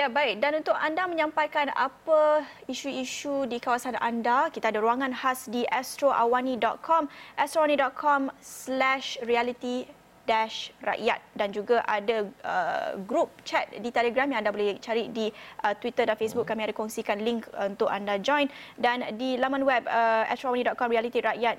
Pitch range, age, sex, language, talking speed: 205-255 Hz, 20-39, female, Malay, 145 wpm